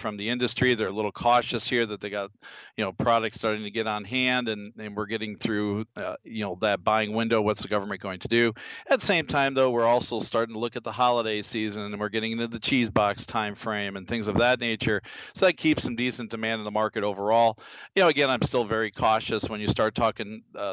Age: 40-59